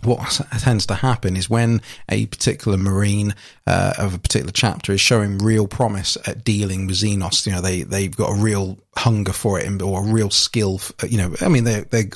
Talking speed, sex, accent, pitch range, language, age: 205 wpm, male, British, 100-120 Hz, English, 30-49